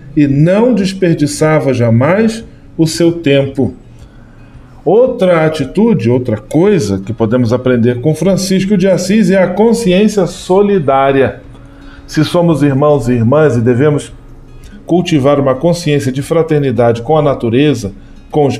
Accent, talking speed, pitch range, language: Brazilian, 125 wpm, 130-180 Hz, Portuguese